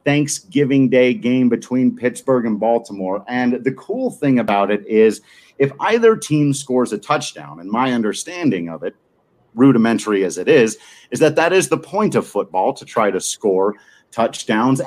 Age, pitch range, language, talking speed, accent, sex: 40-59, 115-155 Hz, English, 170 wpm, American, male